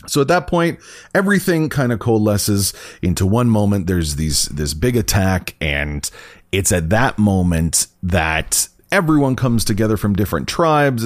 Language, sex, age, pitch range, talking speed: English, male, 30-49, 95-130 Hz, 150 wpm